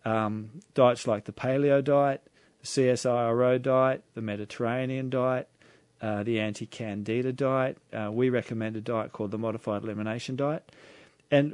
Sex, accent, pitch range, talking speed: male, Australian, 110-130 Hz, 140 wpm